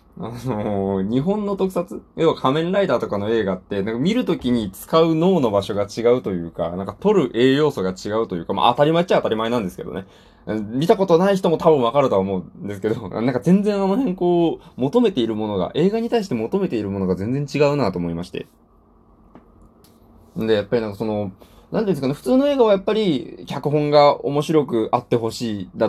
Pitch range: 105-170 Hz